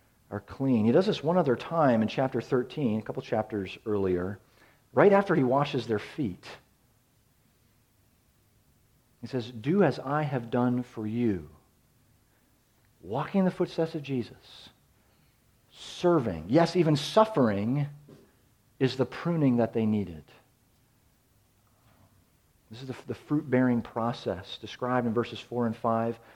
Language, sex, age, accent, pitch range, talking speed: English, male, 40-59, American, 115-140 Hz, 130 wpm